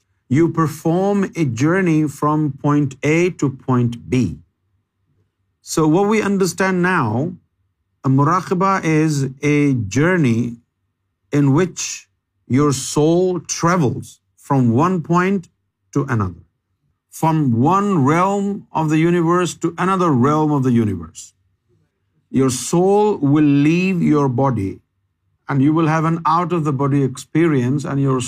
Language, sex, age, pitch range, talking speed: Urdu, male, 50-69, 115-165 Hz, 120 wpm